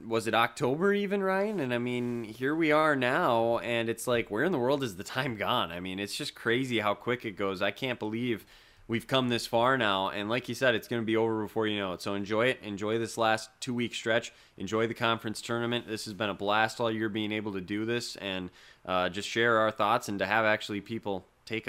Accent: American